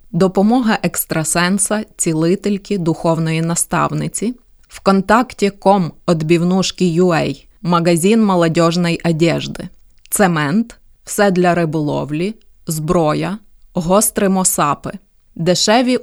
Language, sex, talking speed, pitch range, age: Ukrainian, female, 70 wpm, 165-195 Hz, 20-39